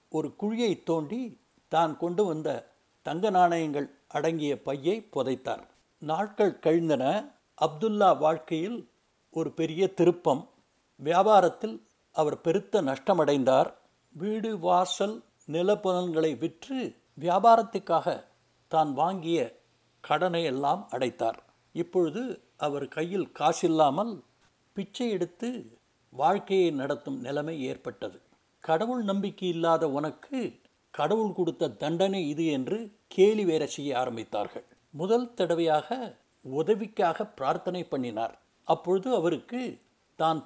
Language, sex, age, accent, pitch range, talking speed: Tamil, male, 60-79, native, 155-200 Hz, 90 wpm